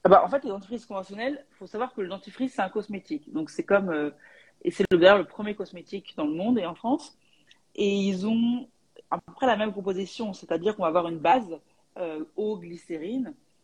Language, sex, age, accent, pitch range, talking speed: French, female, 40-59, French, 170-225 Hz, 220 wpm